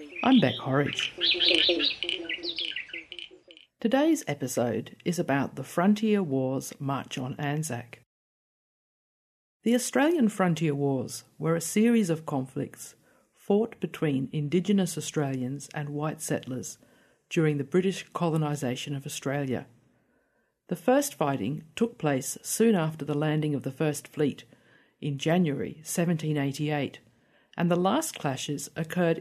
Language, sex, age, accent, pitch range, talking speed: English, female, 50-69, Australian, 145-185 Hz, 115 wpm